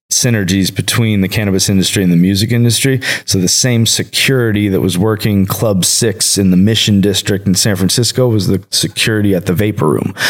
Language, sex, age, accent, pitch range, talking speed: English, male, 20-39, American, 95-115 Hz, 185 wpm